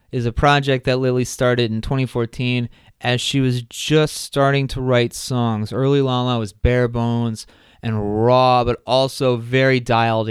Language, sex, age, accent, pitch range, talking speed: English, male, 20-39, American, 120-150 Hz, 165 wpm